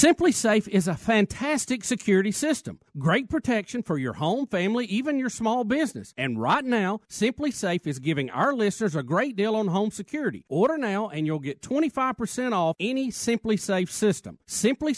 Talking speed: 175 wpm